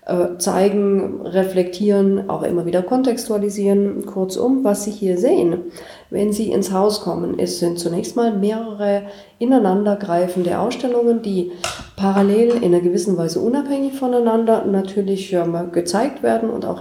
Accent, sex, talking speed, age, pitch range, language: German, female, 135 wpm, 40-59, 175-220 Hz, German